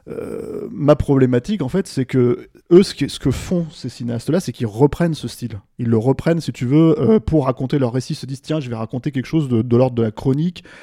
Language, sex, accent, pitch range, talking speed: French, male, French, 120-160 Hz, 260 wpm